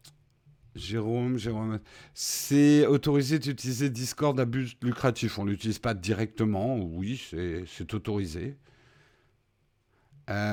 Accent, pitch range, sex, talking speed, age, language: French, 115-155 Hz, male, 110 wpm, 50-69, French